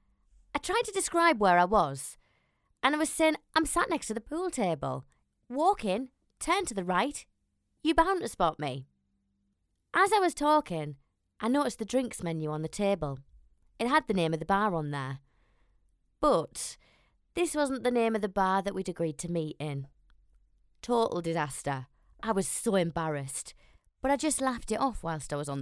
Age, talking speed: 20-39, 185 wpm